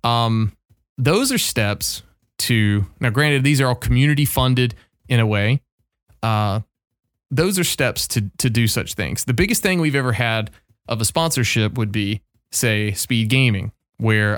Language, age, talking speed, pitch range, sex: English, 20-39, 165 wpm, 105-130 Hz, male